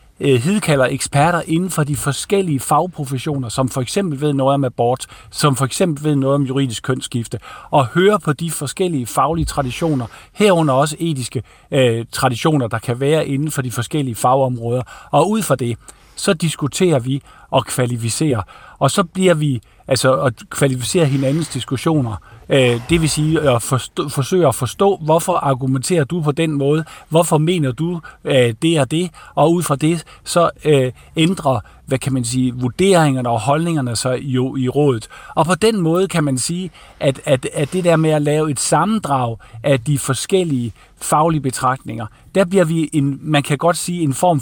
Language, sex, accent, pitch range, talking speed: Danish, male, native, 130-165 Hz, 175 wpm